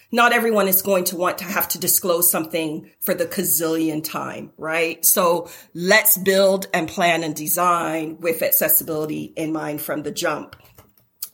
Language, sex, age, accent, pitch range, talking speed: English, female, 40-59, American, 160-190 Hz, 160 wpm